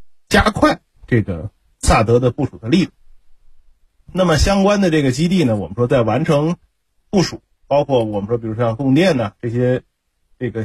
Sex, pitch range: male, 110-155 Hz